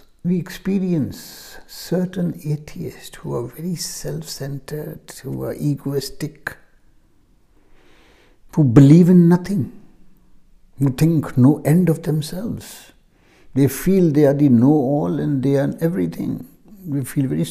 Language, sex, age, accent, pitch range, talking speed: English, male, 60-79, Indian, 135-175 Hz, 120 wpm